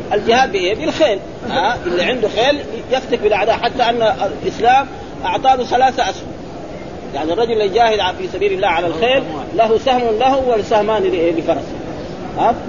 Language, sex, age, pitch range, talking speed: Arabic, male, 40-59, 200-245 Hz, 135 wpm